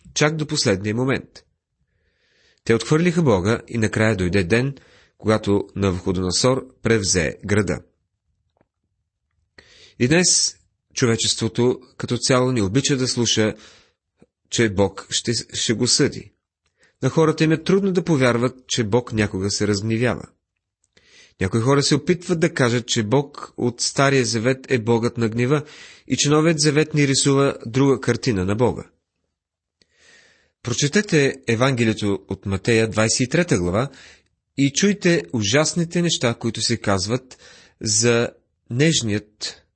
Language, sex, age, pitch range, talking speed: Bulgarian, male, 30-49, 100-135 Hz, 125 wpm